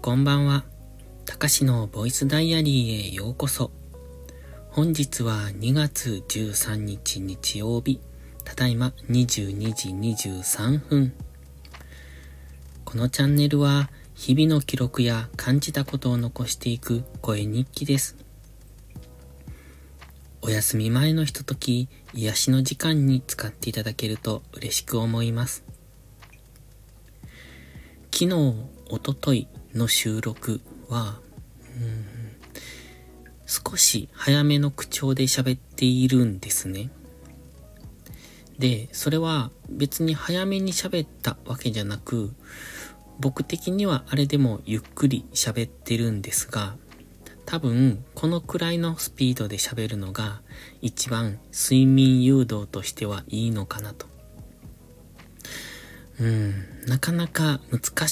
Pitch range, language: 105-135 Hz, Japanese